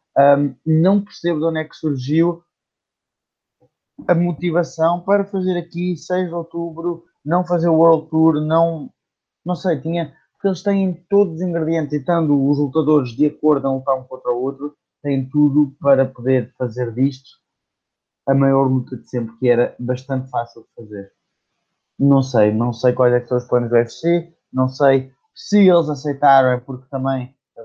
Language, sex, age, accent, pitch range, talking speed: Portuguese, male, 20-39, Brazilian, 125-150 Hz, 175 wpm